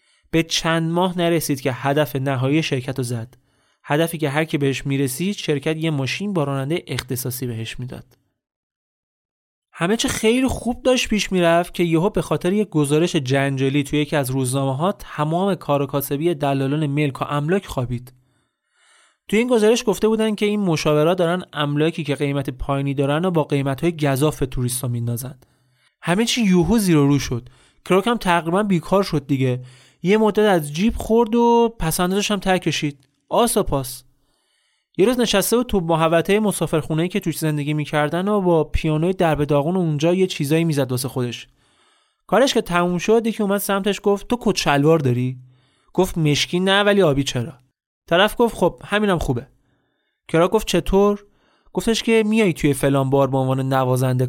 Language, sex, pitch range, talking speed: Persian, male, 135-190 Hz, 165 wpm